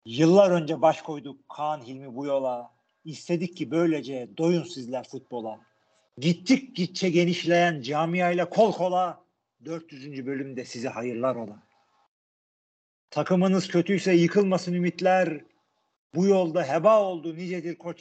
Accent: native